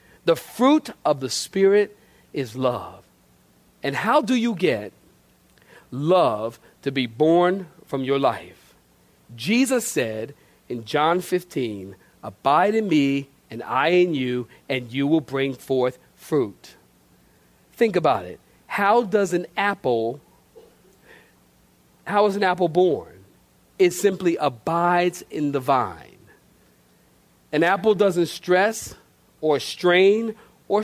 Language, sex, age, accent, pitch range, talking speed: English, male, 40-59, American, 140-220 Hz, 120 wpm